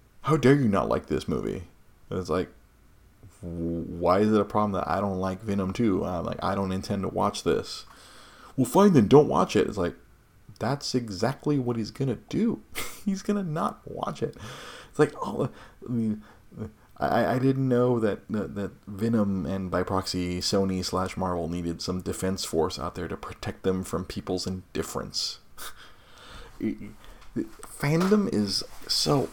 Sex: male